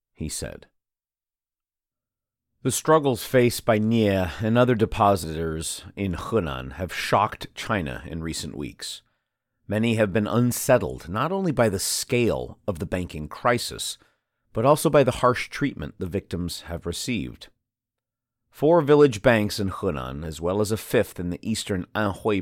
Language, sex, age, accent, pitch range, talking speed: English, male, 40-59, American, 90-125 Hz, 145 wpm